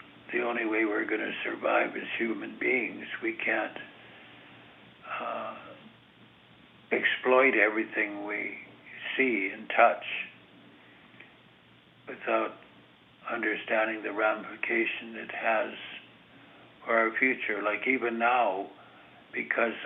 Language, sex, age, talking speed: English, male, 60-79, 95 wpm